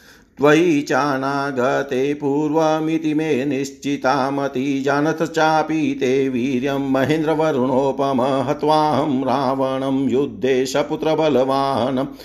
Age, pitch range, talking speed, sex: 50-69, 130-150 Hz, 70 wpm, male